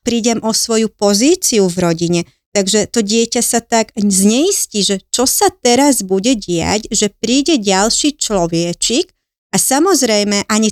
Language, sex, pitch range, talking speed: Slovak, female, 195-240 Hz, 140 wpm